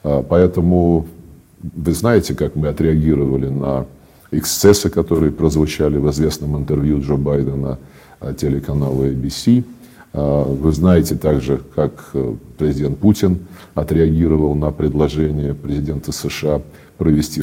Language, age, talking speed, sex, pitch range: Russian, 50-69, 100 wpm, male, 75-90 Hz